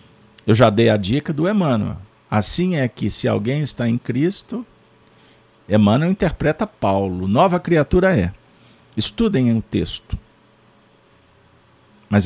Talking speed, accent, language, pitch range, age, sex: 120 wpm, Brazilian, Portuguese, 105-140 Hz, 50-69, male